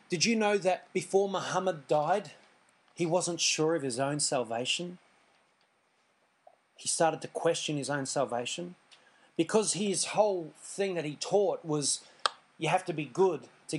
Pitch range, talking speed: 140-180 Hz, 150 wpm